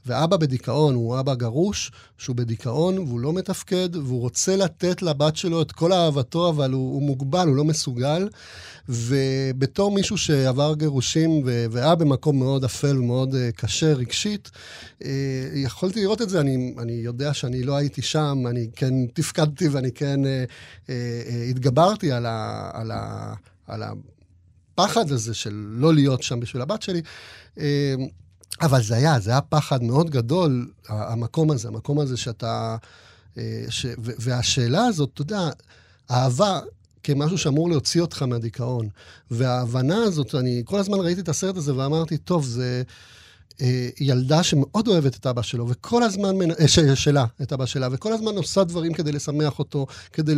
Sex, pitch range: male, 120-160 Hz